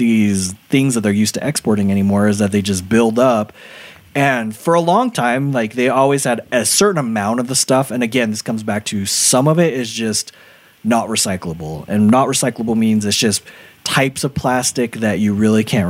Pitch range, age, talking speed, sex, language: 100-125 Hz, 20-39, 210 wpm, male, English